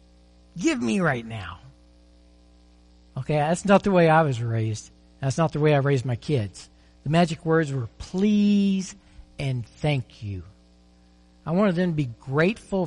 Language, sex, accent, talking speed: English, male, American, 160 wpm